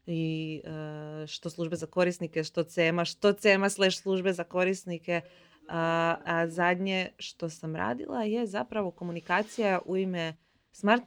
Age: 20-39